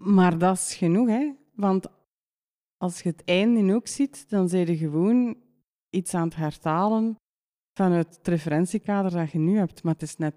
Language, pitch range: Dutch, 160-210 Hz